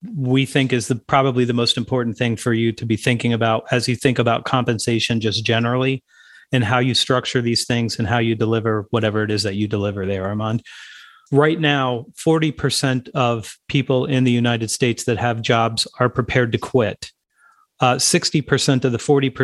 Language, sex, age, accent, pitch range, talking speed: English, male, 30-49, American, 115-135 Hz, 180 wpm